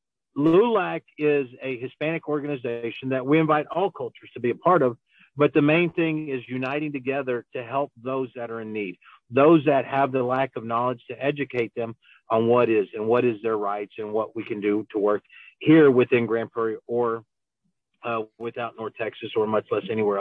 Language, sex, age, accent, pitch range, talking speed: English, male, 50-69, American, 115-140 Hz, 200 wpm